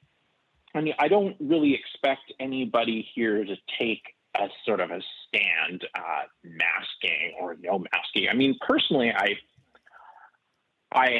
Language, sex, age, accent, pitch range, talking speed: English, male, 30-49, American, 105-140 Hz, 135 wpm